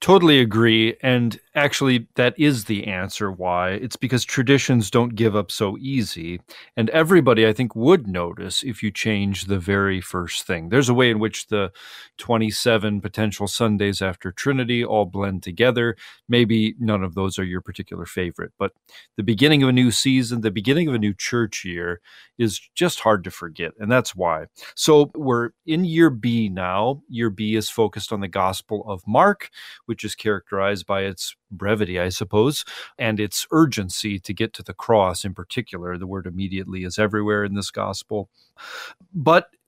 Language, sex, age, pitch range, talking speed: English, male, 30-49, 95-120 Hz, 175 wpm